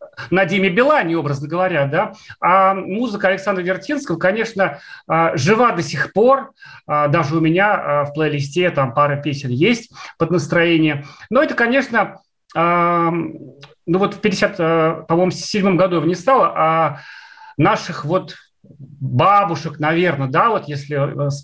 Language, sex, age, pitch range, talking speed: Russian, male, 30-49, 150-205 Hz, 120 wpm